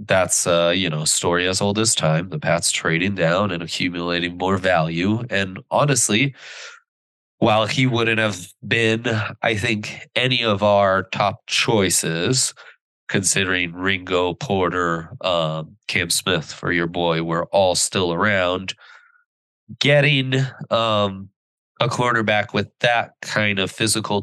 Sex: male